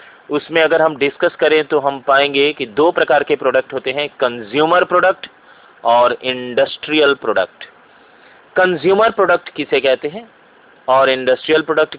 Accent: native